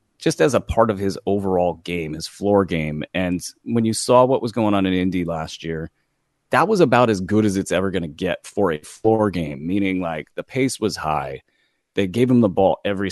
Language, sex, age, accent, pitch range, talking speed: English, male, 30-49, American, 90-115 Hz, 230 wpm